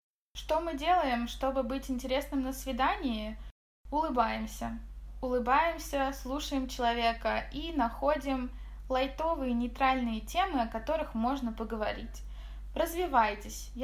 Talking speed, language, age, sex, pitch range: 95 wpm, Russian, 20-39, female, 225-275 Hz